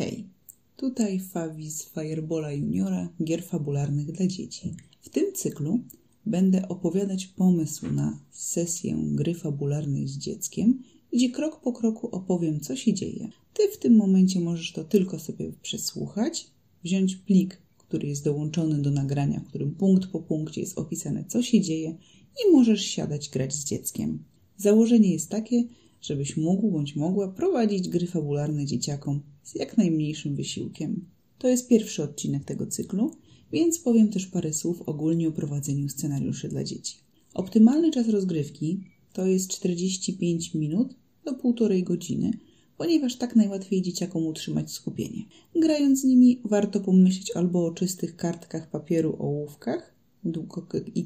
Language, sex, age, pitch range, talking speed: Polish, female, 30-49, 160-220 Hz, 145 wpm